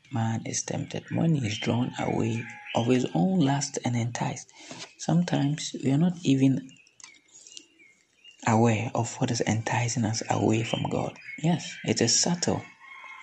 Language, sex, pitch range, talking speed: English, male, 115-150 Hz, 145 wpm